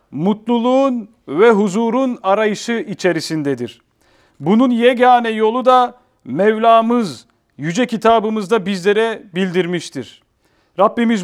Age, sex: 40-59, male